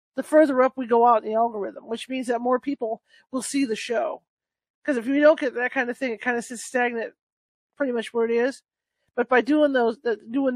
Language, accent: English, American